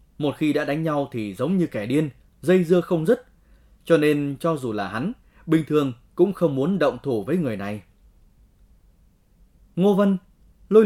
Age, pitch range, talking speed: 20-39, 125-175 Hz, 180 wpm